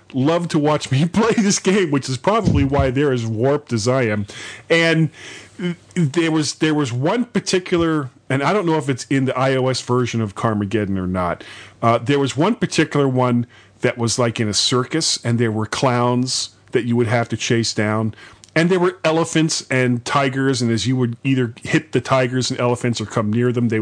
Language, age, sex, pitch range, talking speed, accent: English, 40-59, male, 110-140 Hz, 205 wpm, American